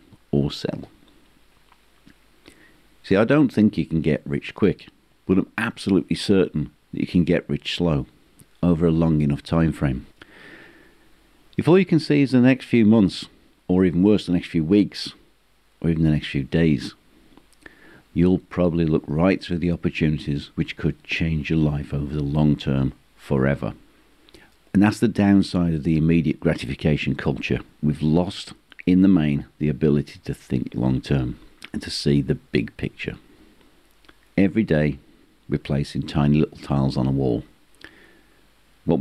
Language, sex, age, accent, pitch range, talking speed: English, male, 50-69, British, 70-90 Hz, 160 wpm